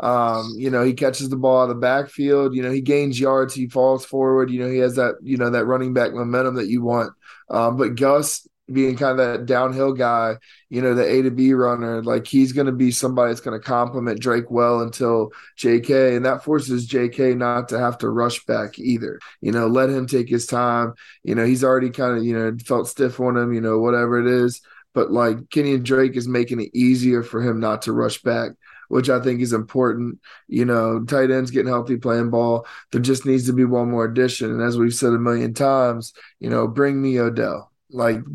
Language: English